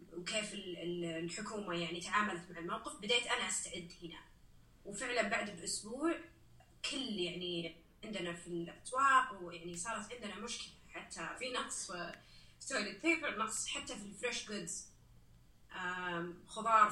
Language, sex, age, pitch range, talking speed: Arabic, female, 30-49, 175-230 Hz, 125 wpm